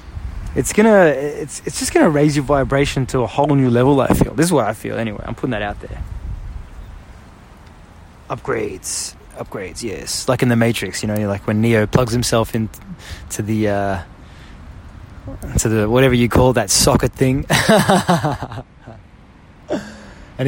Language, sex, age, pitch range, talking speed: English, male, 20-39, 95-130 Hz, 155 wpm